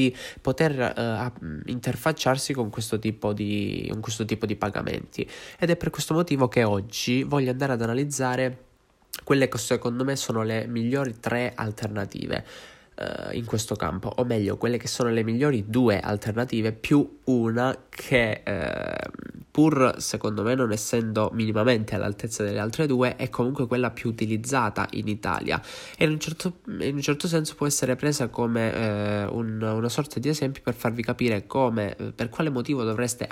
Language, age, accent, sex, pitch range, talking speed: Italian, 20-39, native, male, 110-130 Hz, 160 wpm